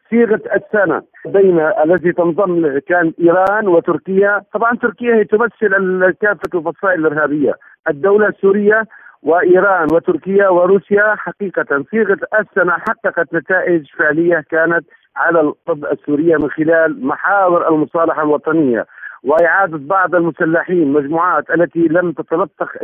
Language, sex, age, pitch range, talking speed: Arabic, male, 50-69, 165-205 Hz, 110 wpm